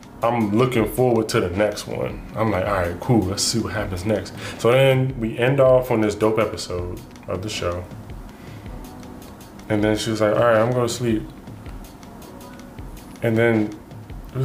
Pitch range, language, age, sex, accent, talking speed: 105-130 Hz, English, 20-39, male, American, 170 wpm